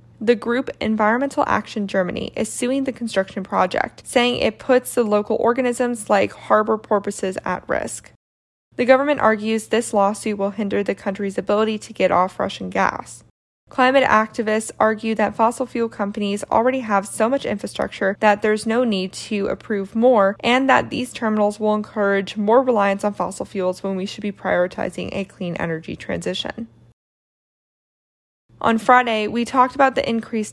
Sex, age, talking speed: female, 20-39, 160 wpm